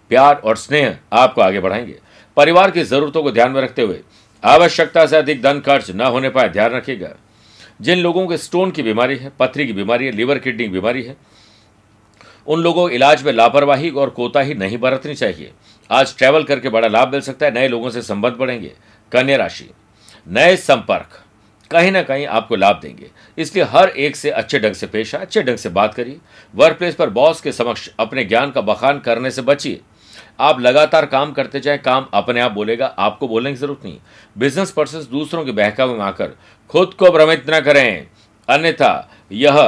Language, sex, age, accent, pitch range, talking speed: Hindi, male, 60-79, native, 115-150 Hz, 195 wpm